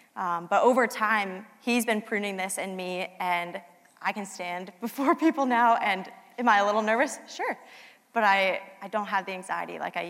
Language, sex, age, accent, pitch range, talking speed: English, female, 20-39, American, 175-230 Hz, 195 wpm